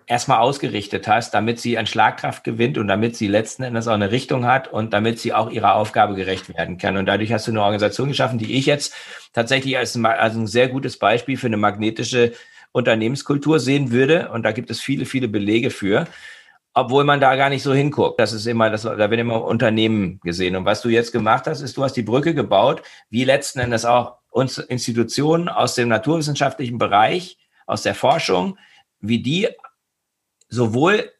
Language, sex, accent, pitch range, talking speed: German, male, German, 110-135 Hz, 190 wpm